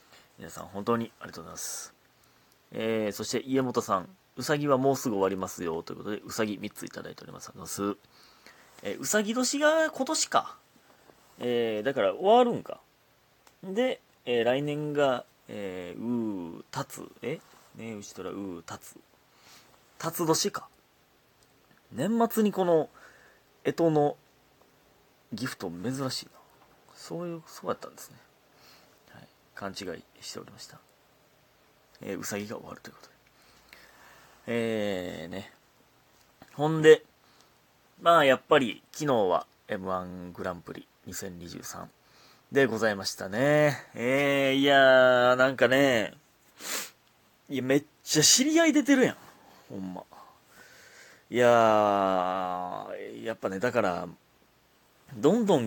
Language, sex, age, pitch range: Japanese, male, 30-49, 110-160 Hz